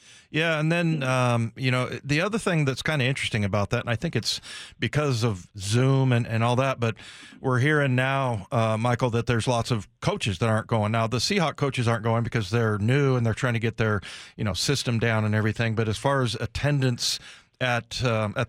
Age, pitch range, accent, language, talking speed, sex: 40-59, 115-135 Hz, American, English, 225 wpm, male